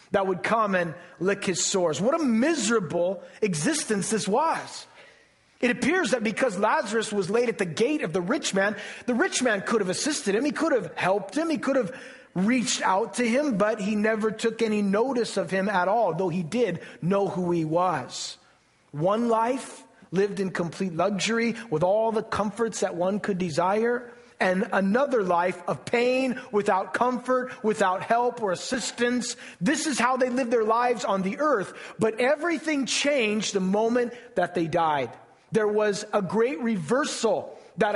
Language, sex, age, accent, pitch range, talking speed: English, male, 30-49, American, 195-245 Hz, 175 wpm